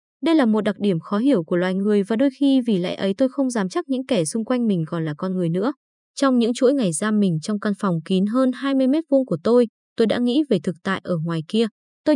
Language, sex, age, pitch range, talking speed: Vietnamese, female, 20-39, 190-255 Hz, 275 wpm